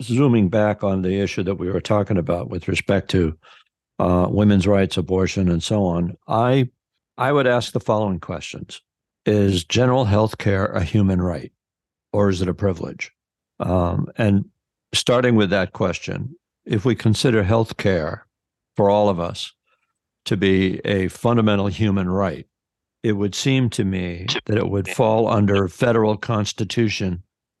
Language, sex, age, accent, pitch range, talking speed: English, male, 60-79, American, 95-110 Hz, 155 wpm